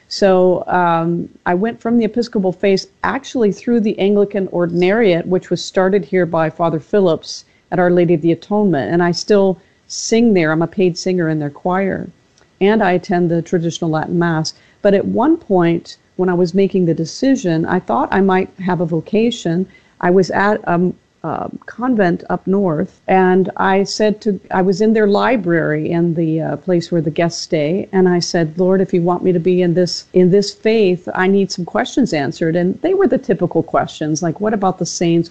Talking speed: 200 wpm